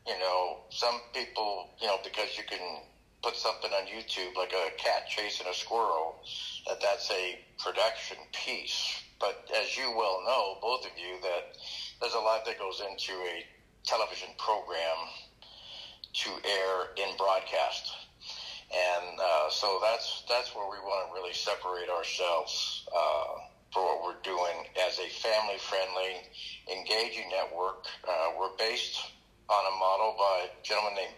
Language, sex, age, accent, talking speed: English, male, 50-69, American, 150 wpm